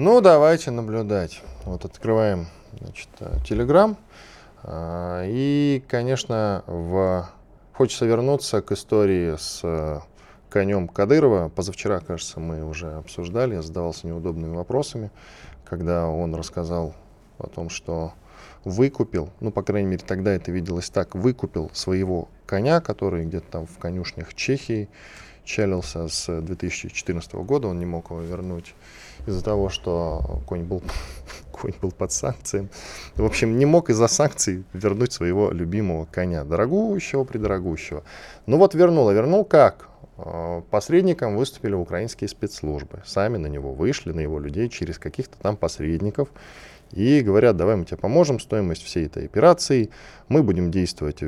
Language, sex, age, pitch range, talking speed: Russian, male, 20-39, 85-110 Hz, 130 wpm